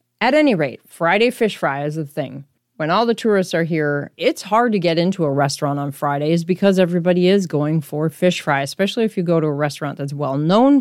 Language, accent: English, American